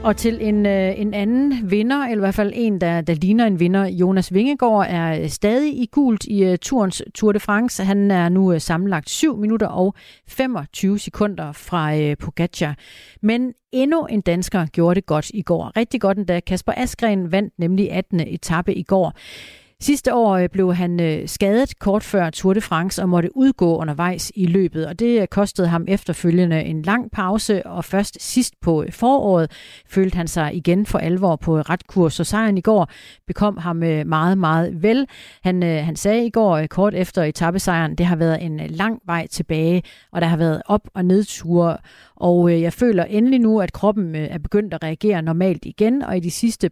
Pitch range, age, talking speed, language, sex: 170-210 Hz, 40-59, 185 wpm, Danish, female